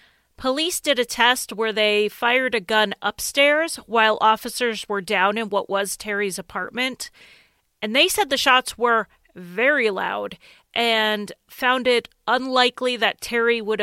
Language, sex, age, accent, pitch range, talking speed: English, female, 30-49, American, 210-250 Hz, 150 wpm